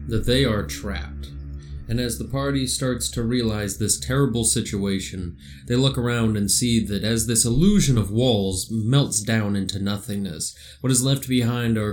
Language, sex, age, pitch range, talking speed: English, male, 20-39, 95-120 Hz, 170 wpm